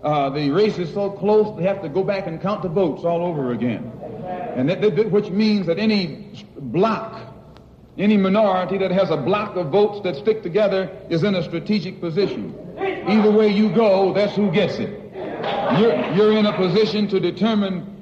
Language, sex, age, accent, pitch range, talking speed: English, male, 60-79, American, 185-220 Hz, 190 wpm